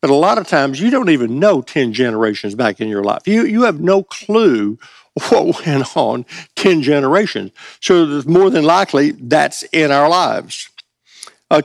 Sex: male